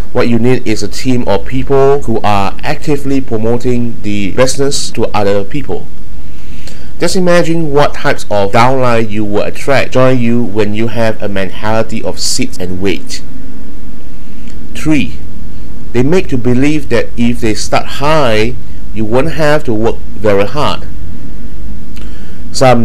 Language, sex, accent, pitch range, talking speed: English, male, Malaysian, 100-130 Hz, 145 wpm